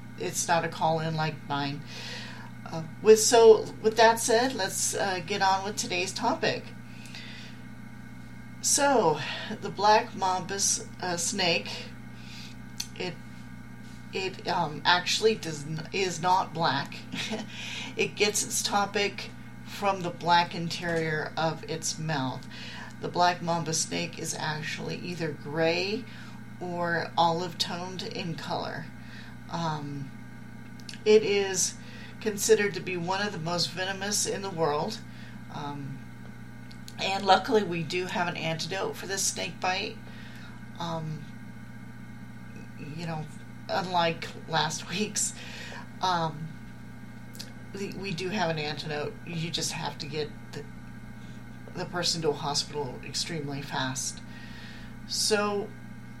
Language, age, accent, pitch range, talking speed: English, 40-59, American, 155-195 Hz, 115 wpm